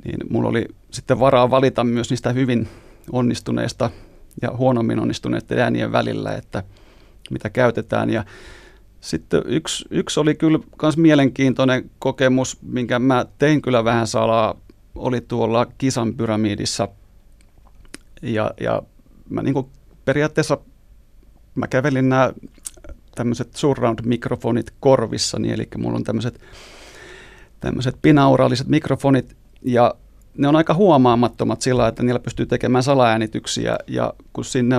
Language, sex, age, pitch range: Finnish, male, 30-49, 115-135 Hz